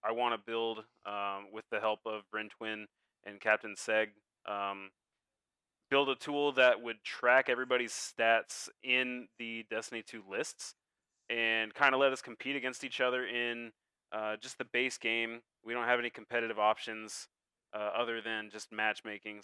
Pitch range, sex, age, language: 110-125 Hz, male, 20-39, English